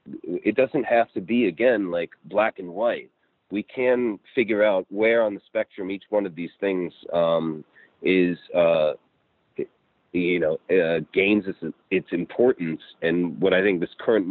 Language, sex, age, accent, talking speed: English, male, 40-59, American, 165 wpm